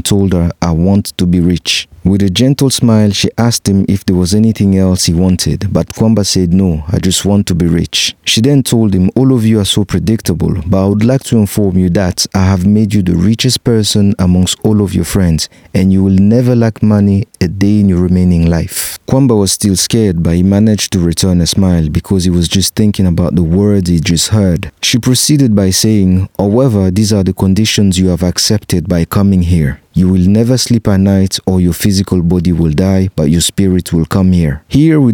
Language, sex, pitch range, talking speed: English, male, 90-110 Hz, 220 wpm